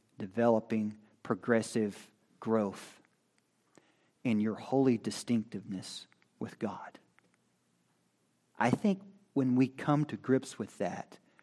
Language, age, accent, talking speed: English, 40-59, American, 95 wpm